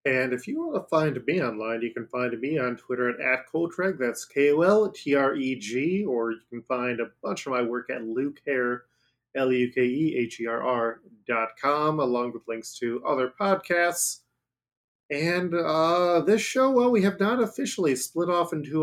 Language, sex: English, male